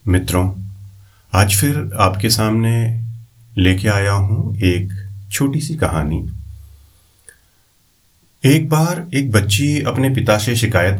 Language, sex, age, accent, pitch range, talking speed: Hindi, male, 40-59, native, 100-135 Hz, 110 wpm